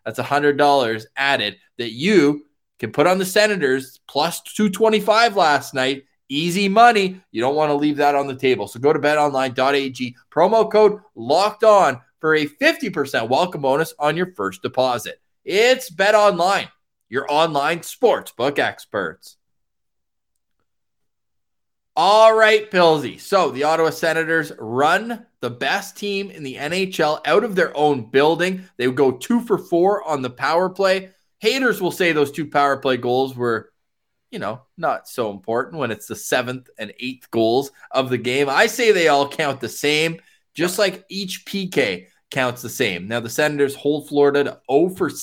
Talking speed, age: 165 wpm, 20-39